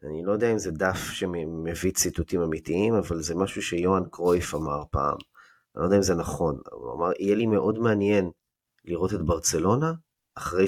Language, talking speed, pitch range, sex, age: Hebrew, 180 wpm, 85-105 Hz, male, 20-39